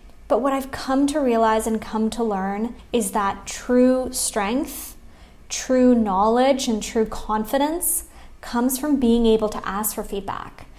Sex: female